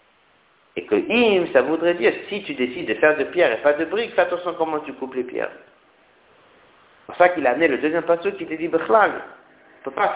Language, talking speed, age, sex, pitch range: French, 265 wpm, 50-69, male, 130-180 Hz